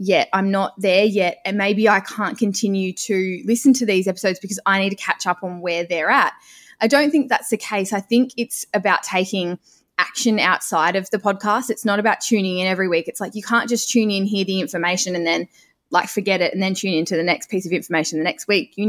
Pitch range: 185-240 Hz